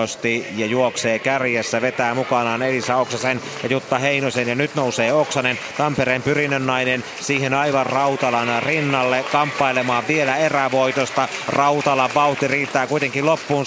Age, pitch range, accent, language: 30-49, 115-135 Hz, native, Finnish